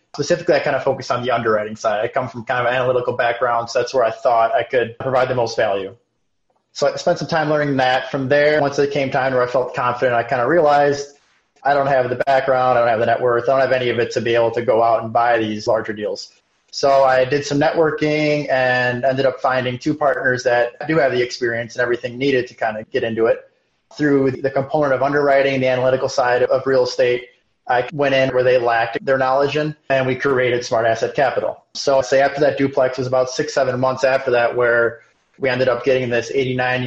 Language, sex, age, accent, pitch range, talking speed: English, male, 20-39, American, 125-140 Hz, 240 wpm